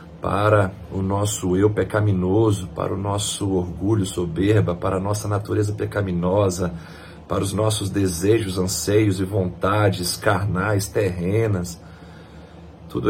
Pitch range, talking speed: 85-105 Hz, 115 wpm